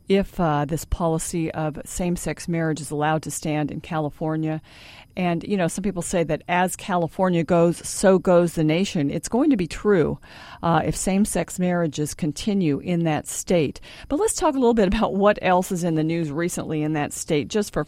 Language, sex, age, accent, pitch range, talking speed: English, female, 50-69, American, 155-200 Hz, 200 wpm